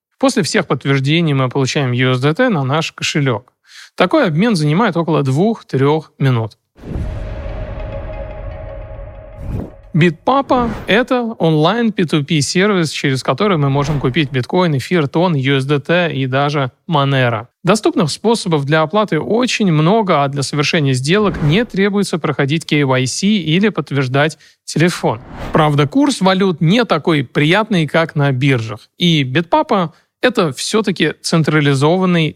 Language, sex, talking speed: Russian, male, 115 wpm